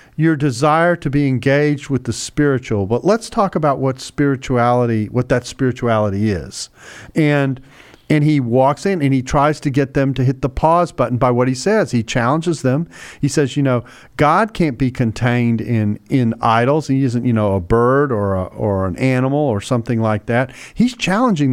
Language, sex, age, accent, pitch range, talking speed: English, male, 40-59, American, 120-150 Hz, 190 wpm